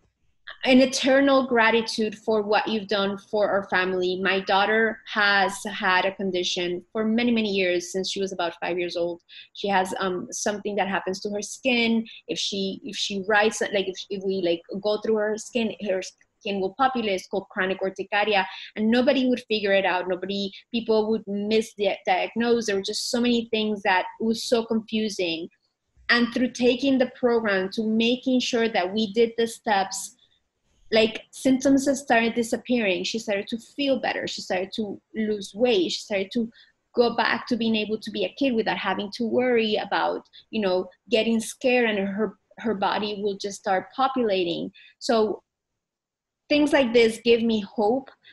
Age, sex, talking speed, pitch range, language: 20-39, female, 175 wpm, 195-235 Hz, English